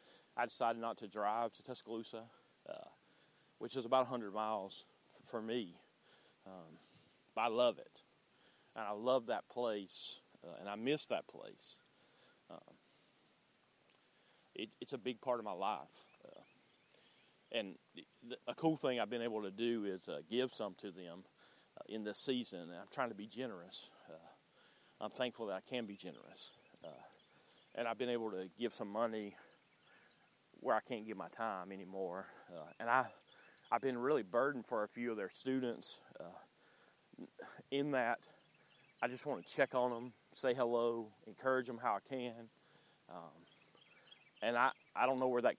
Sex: male